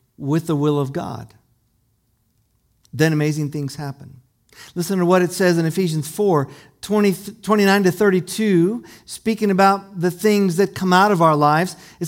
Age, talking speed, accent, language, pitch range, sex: 50-69, 160 wpm, American, English, 130-200 Hz, male